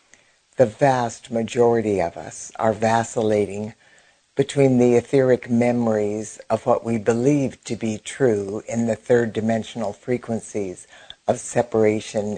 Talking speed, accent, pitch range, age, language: 120 wpm, American, 110-125 Hz, 60-79, English